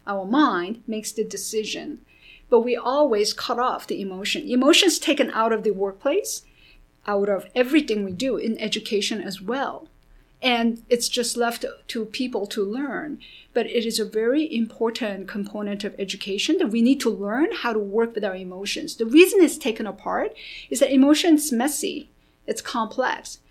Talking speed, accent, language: 170 wpm, American, English